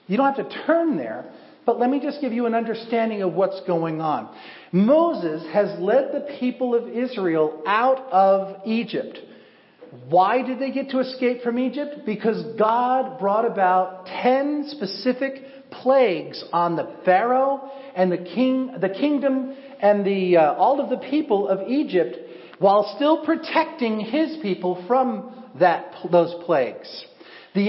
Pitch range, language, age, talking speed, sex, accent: 190-265 Hz, English, 50-69, 150 wpm, male, American